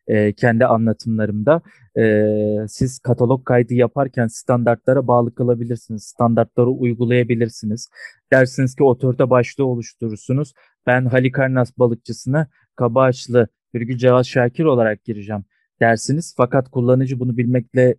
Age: 30-49